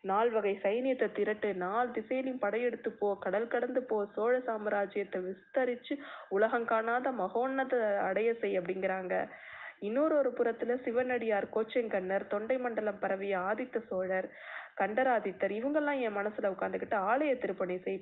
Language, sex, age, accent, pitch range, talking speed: Tamil, female, 20-39, native, 200-255 Hz, 130 wpm